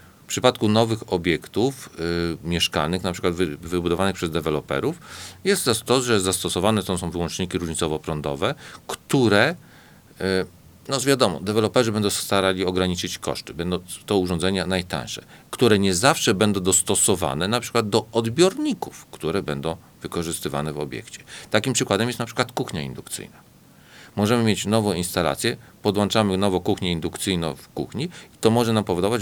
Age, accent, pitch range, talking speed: 40-59, native, 85-105 Hz, 140 wpm